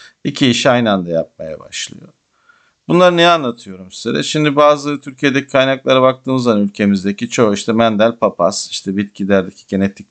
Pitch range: 100-135 Hz